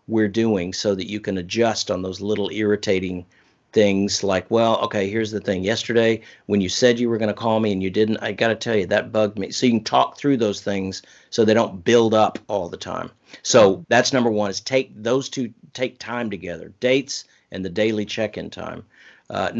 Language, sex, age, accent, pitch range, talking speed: English, male, 50-69, American, 100-120 Hz, 225 wpm